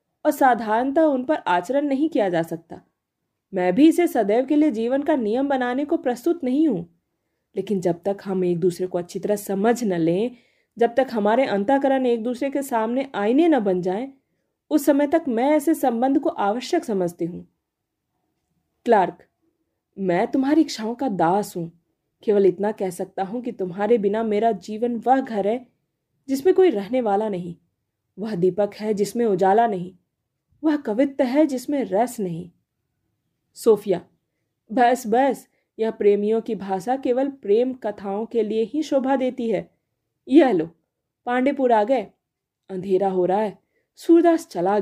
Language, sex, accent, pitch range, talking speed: Hindi, female, native, 190-265 Hz, 155 wpm